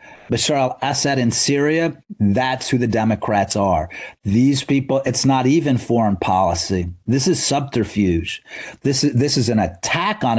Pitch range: 115-145 Hz